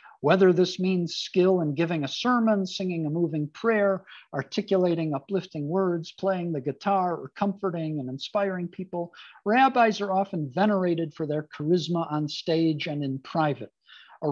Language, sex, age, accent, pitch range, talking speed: English, male, 50-69, American, 155-195 Hz, 150 wpm